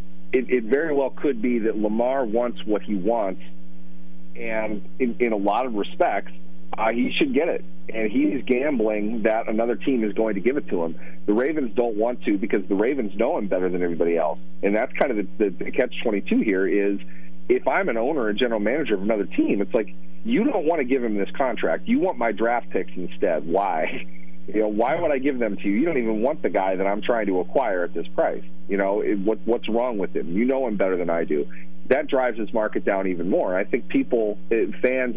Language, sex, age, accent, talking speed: English, male, 40-59, American, 230 wpm